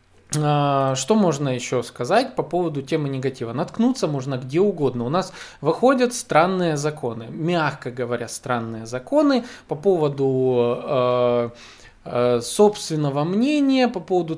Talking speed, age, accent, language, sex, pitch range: 120 wpm, 20-39, native, Russian, male, 135-195 Hz